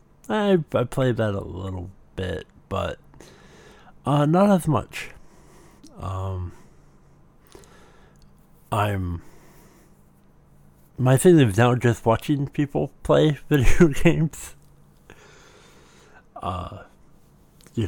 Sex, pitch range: male, 90-130 Hz